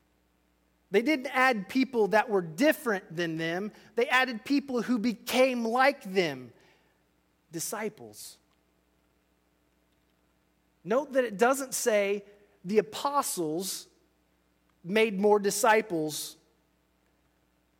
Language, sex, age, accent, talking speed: English, male, 30-49, American, 90 wpm